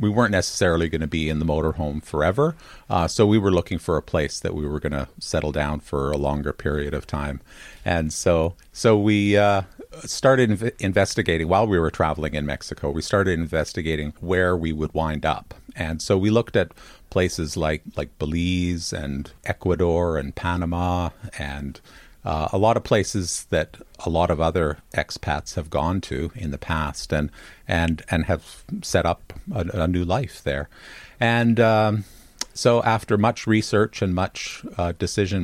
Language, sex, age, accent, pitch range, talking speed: English, male, 50-69, American, 80-100 Hz, 180 wpm